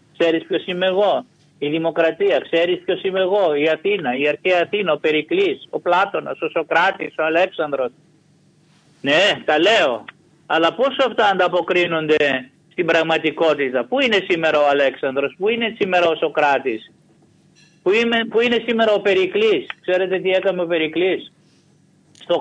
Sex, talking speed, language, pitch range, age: male, 145 wpm, Greek, 165-205 Hz, 50-69